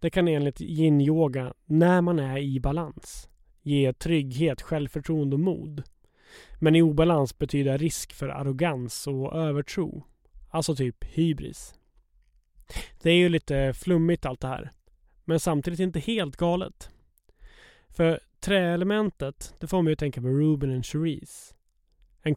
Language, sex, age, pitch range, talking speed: English, male, 20-39, 140-165 Hz, 135 wpm